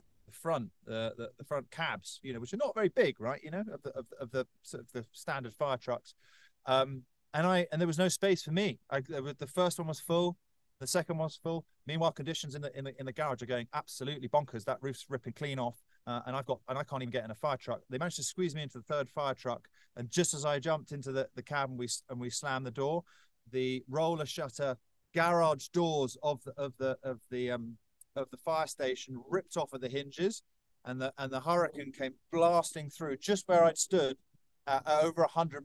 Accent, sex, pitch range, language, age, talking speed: British, male, 125-155 Hz, English, 40-59, 245 wpm